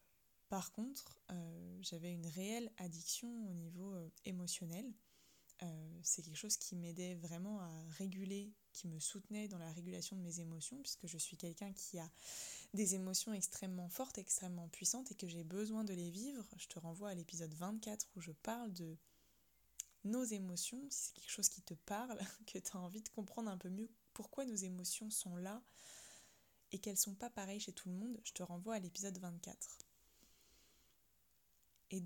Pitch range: 175-215 Hz